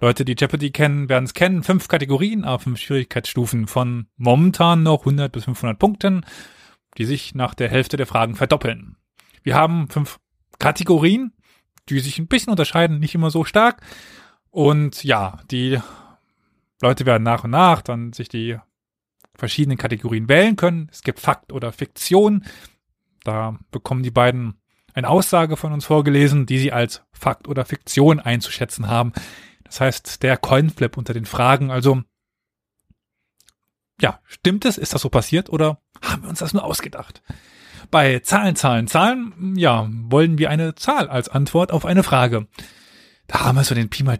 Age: 30-49